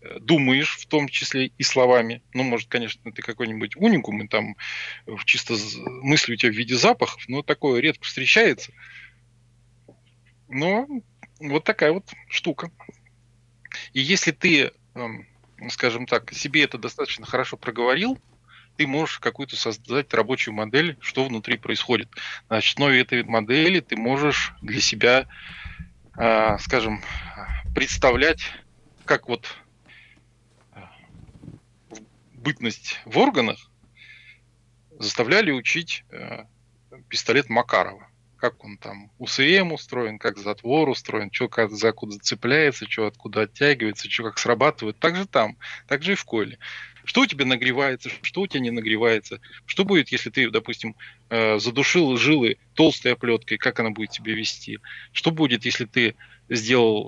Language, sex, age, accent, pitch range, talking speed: Russian, male, 20-39, native, 115-140 Hz, 130 wpm